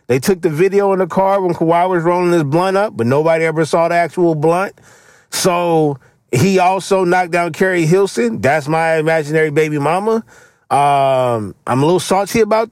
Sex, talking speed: male, 185 wpm